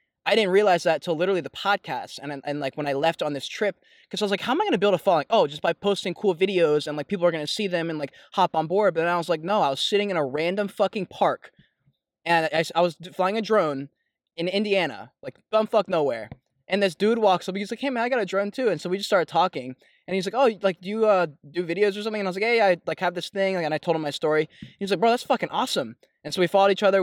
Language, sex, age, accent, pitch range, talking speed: English, male, 20-39, American, 155-195 Hz, 295 wpm